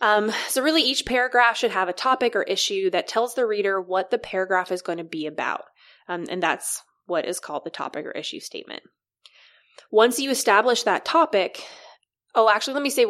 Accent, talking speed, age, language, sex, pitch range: American, 200 wpm, 20-39, English, female, 175-235 Hz